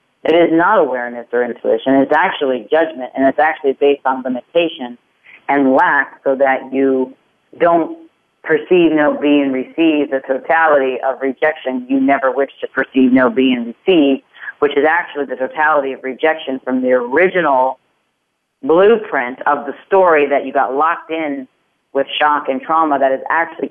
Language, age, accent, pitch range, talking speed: English, 40-59, American, 130-155 Hz, 165 wpm